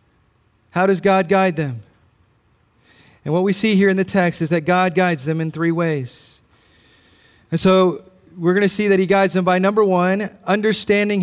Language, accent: English, American